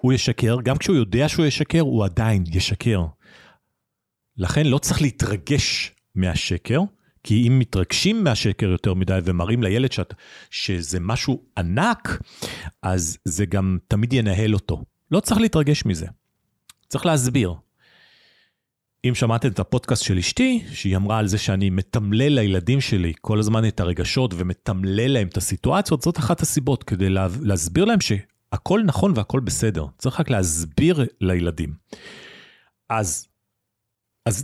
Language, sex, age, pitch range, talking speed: Hebrew, male, 40-59, 95-135 Hz, 140 wpm